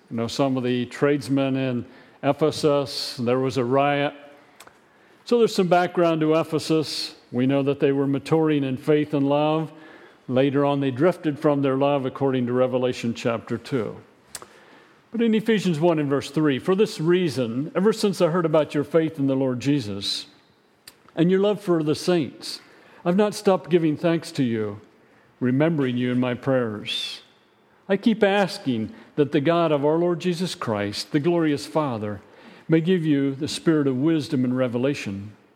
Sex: male